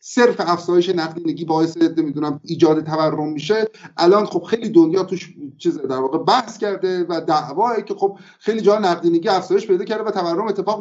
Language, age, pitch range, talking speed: Persian, 50-69, 175-225 Hz, 165 wpm